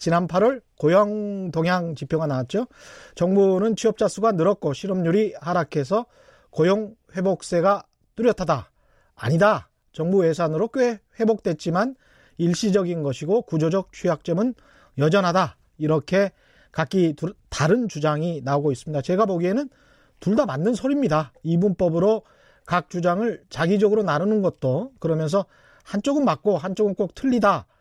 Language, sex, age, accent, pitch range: Korean, male, 30-49, native, 165-225 Hz